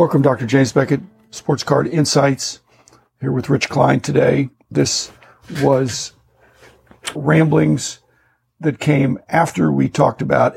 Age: 50-69